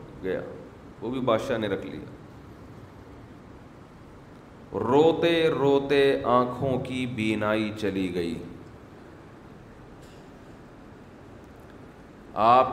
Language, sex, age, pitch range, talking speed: Urdu, male, 40-59, 110-130 Hz, 70 wpm